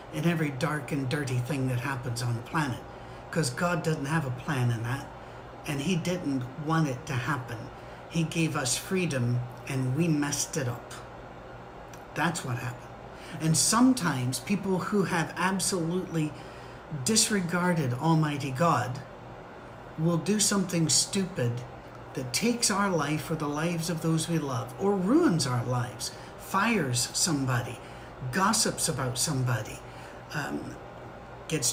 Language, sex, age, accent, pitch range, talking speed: English, male, 60-79, American, 130-180 Hz, 140 wpm